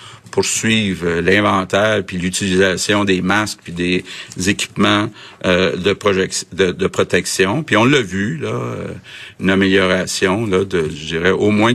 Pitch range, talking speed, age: 90-110 Hz, 150 wpm, 50-69